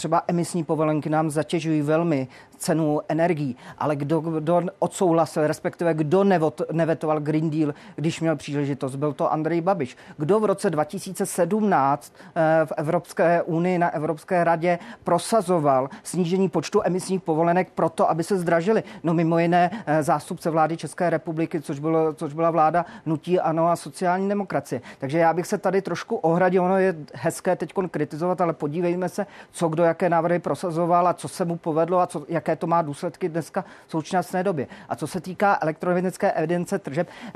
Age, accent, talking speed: 40-59, native, 165 wpm